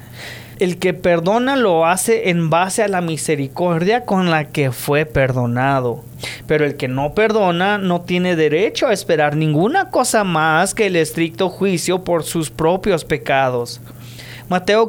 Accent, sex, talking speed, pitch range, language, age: Mexican, male, 150 wpm, 145-215 Hz, English, 30-49